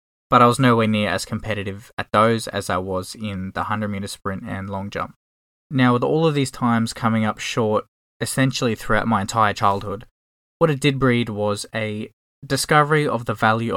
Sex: male